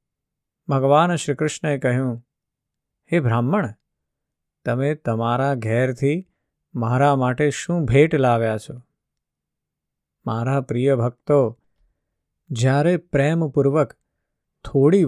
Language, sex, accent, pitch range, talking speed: Gujarati, male, native, 125-150 Hz, 70 wpm